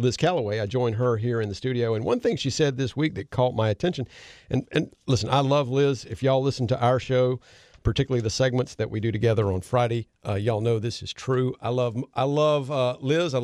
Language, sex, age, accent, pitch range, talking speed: English, male, 50-69, American, 115-140 Hz, 235 wpm